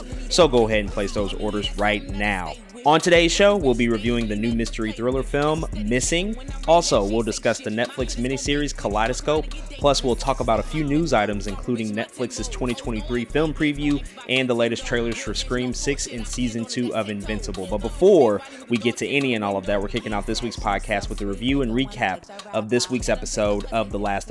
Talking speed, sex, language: 200 wpm, male, English